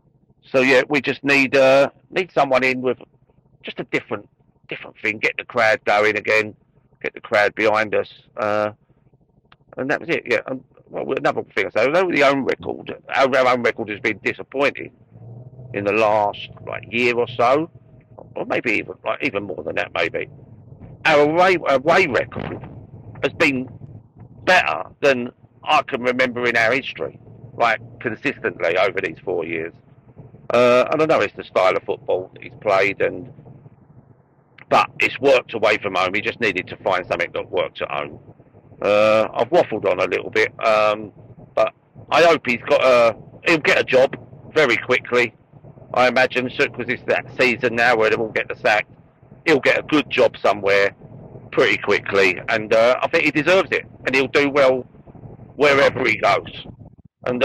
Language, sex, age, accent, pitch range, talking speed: English, male, 50-69, British, 120-140 Hz, 175 wpm